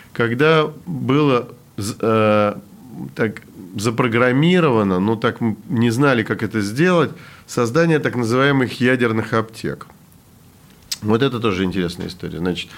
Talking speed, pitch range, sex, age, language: 100 wpm, 105-130 Hz, male, 40-59, Russian